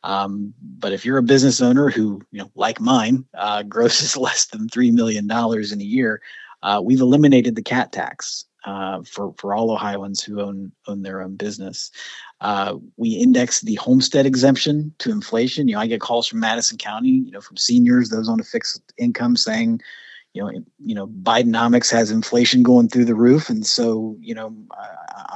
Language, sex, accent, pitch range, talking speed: English, male, American, 105-150 Hz, 190 wpm